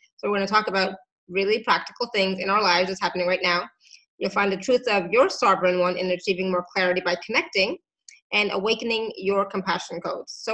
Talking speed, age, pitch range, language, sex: 205 wpm, 20-39, 190-215 Hz, English, female